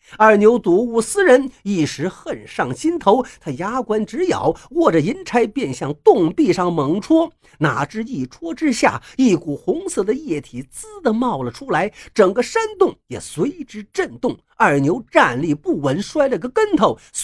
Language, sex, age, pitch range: Chinese, male, 50-69, 180-290 Hz